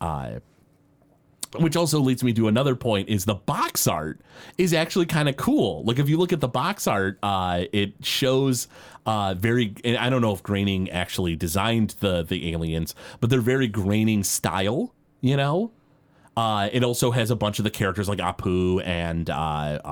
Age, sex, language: 30-49, male, English